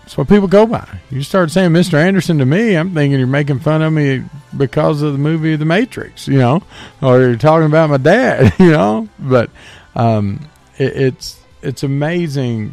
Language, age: English, 40-59